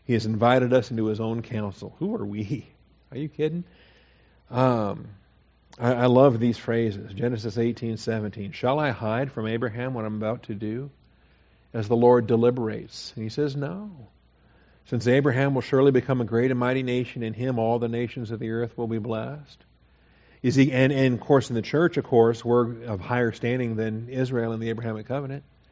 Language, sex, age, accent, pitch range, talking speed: English, male, 50-69, American, 110-130 Hz, 195 wpm